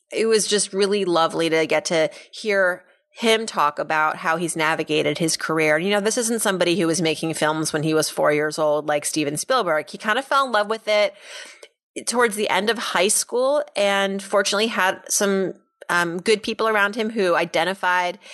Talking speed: 195 wpm